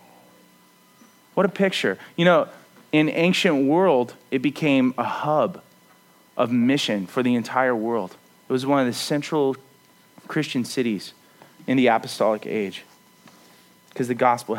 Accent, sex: American, male